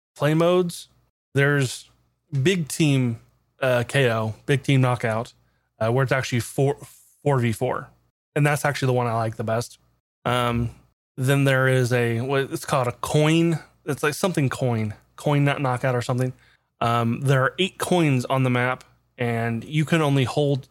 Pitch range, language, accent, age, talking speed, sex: 120-150 Hz, English, American, 20-39, 170 wpm, male